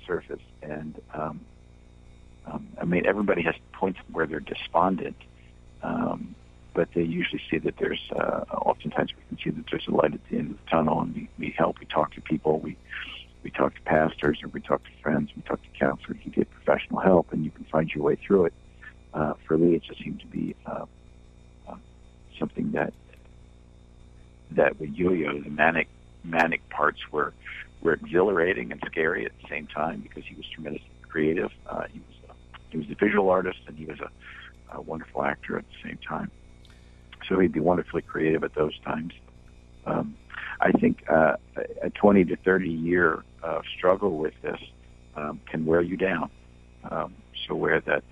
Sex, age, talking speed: male, 60-79, 190 wpm